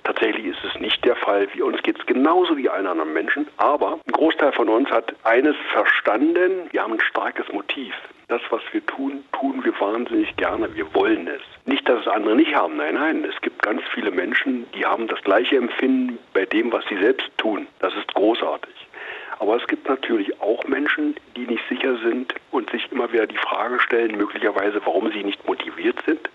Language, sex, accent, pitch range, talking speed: German, male, German, 315-375 Hz, 205 wpm